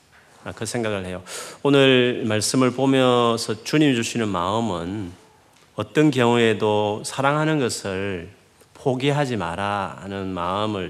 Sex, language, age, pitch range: male, Korean, 30-49, 95-130 Hz